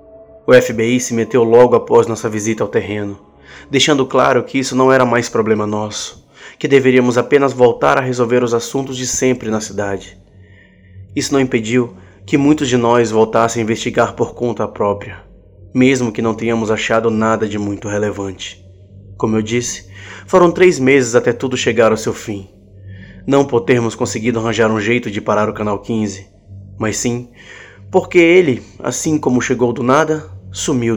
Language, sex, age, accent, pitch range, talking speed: Portuguese, male, 20-39, Brazilian, 100-130 Hz, 170 wpm